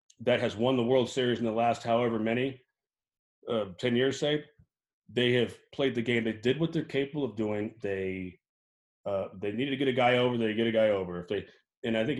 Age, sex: 30-49, male